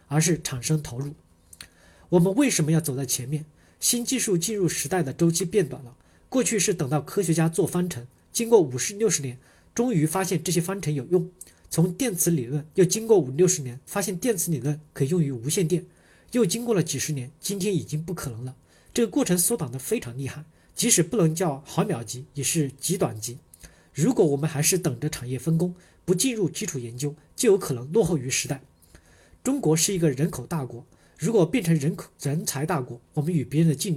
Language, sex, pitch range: Chinese, male, 140-185 Hz